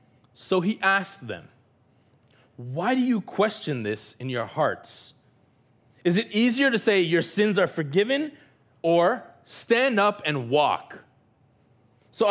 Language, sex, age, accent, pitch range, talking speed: English, male, 30-49, American, 130-195 Hz, 130 wpm